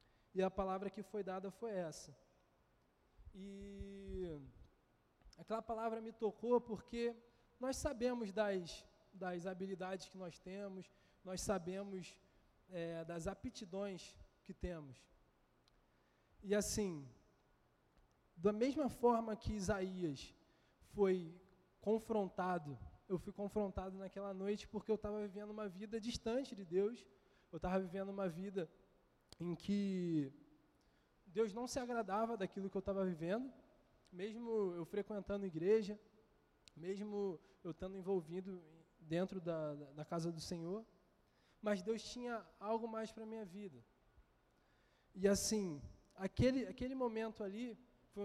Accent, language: Brazilian, Portuguese